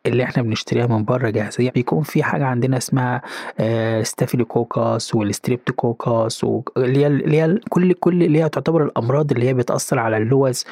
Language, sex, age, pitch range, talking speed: Arabic, male, 20-39, 120-150 Hz, 170 wpm